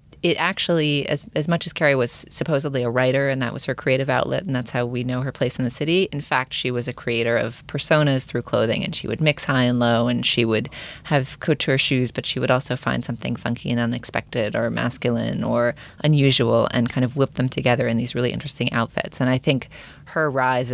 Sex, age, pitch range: female, 30-49, 120-150 Hz